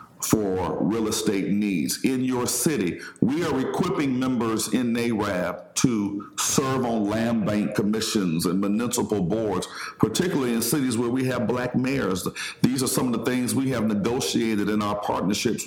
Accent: American